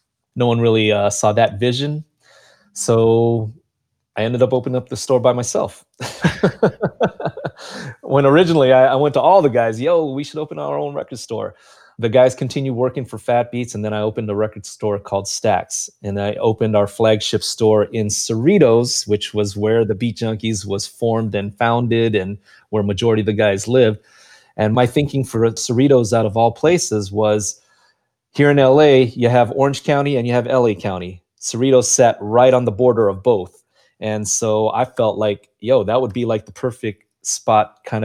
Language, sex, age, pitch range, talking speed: English, male, 30-49, 105-125 Hz, 190 wpm